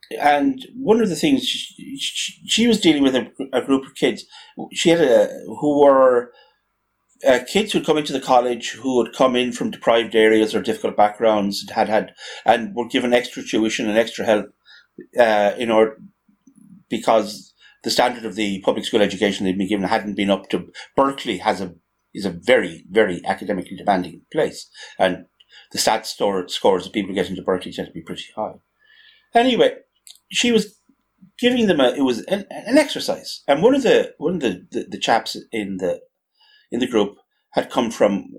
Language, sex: English, male